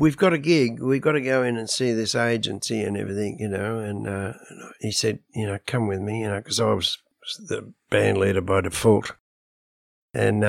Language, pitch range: English, 105-135 Hz